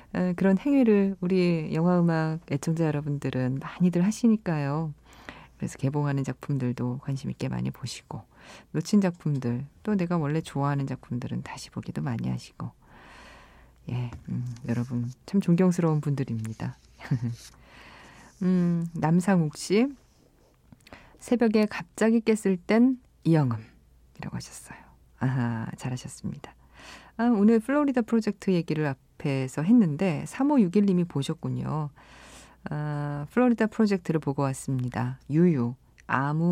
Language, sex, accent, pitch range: Korean, female, native, 125-180 Hz